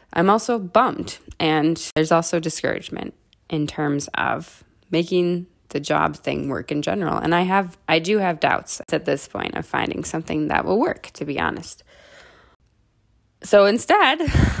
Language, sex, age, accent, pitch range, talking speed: English, female, 20-39, American, 150-195 Hz, 155 wpm